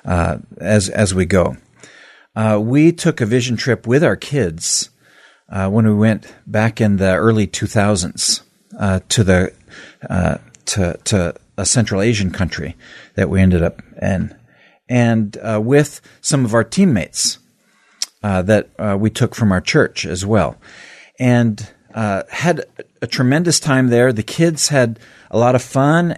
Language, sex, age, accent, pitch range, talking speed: English, male, 50-69, American, 100-130 Hz, 160 wpm